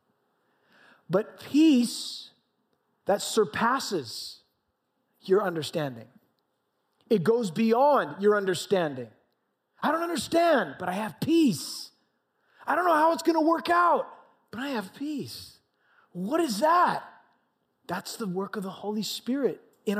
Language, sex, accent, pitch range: English, male, American, 205-290 Hz